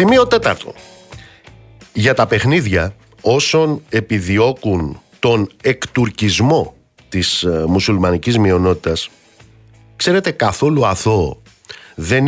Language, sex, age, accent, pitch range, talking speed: Greek, male, 50-69, native, 100-140 Hz, 80 wpm